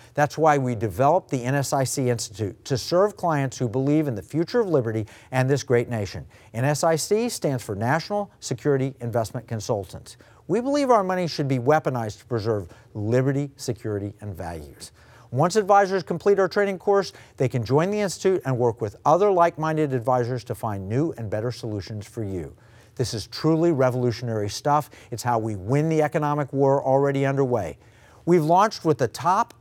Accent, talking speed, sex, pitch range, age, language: American, 170 wpm, male, 115-155 Hz, 50-69, English